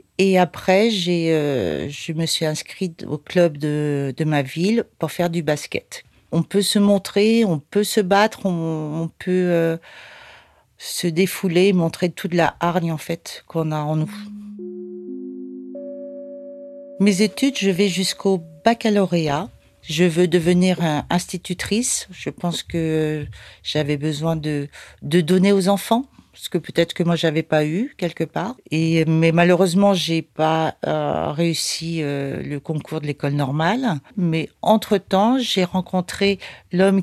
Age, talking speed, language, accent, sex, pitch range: 40-59, 150 wpm, French, French, female, 155-190 Hz